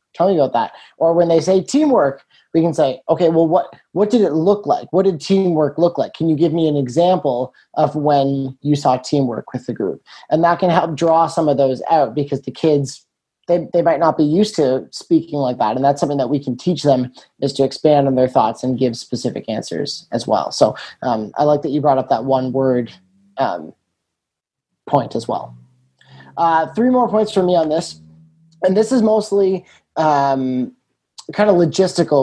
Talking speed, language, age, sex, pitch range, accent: 210 wpm, English, 30-49, male, 135-170 Hz, American